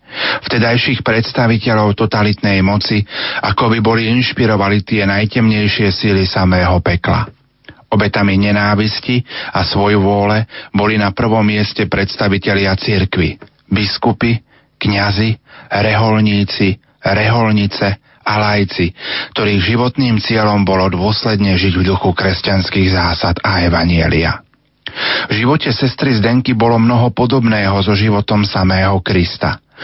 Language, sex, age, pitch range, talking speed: Slovak, male, 40-59, 100-115 Hz, 110 wpm